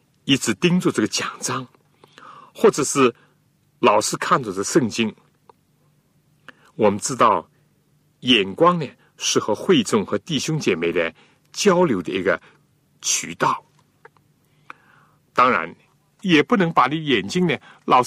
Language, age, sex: Chinese, 60-79, male